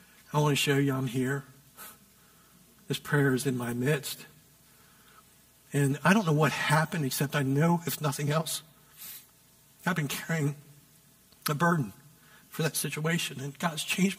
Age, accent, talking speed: 60-79, American, 150 wpm